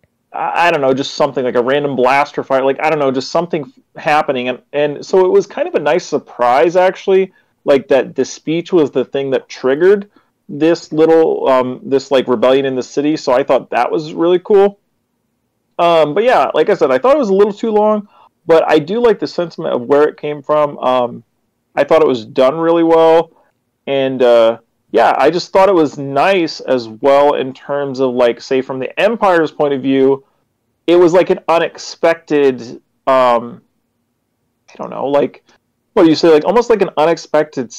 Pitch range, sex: 135-180 Hz, male